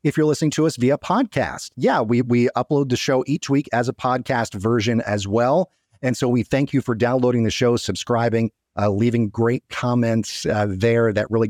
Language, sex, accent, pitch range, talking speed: English, male, American, 110-135 Hz, 205 wpm